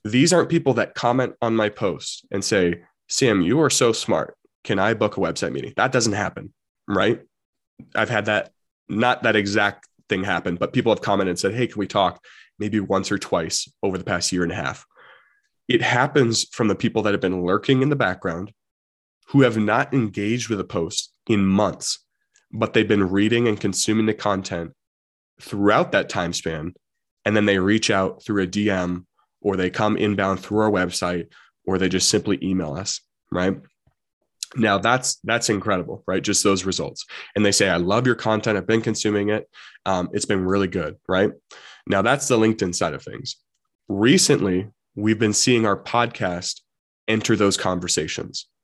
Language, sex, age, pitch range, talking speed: English, male, 20-39, 95-110 Hz, 185 wpm